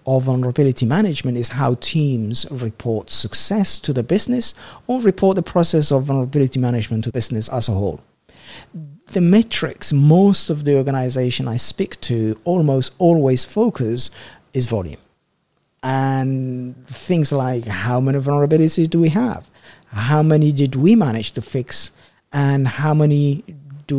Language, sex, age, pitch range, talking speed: English, male, 50-69, 125-155 Hz, 145 wpm